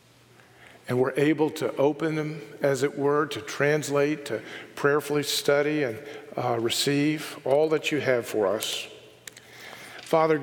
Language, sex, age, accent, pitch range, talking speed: English, male, 50-69, American, 135-165 Hz, 140 wpm